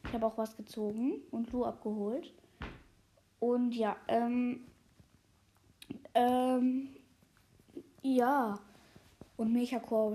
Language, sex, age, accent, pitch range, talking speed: German, female, 10-29, German, 215-265 Hz, 95 wpm